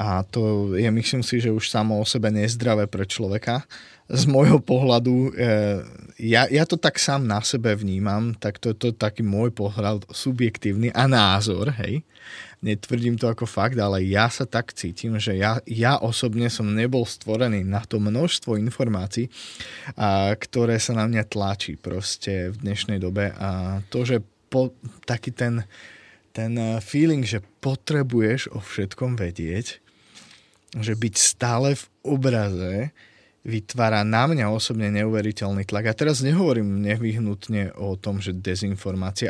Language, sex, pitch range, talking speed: Slovak, male, 105-120 Hz, 150 wpm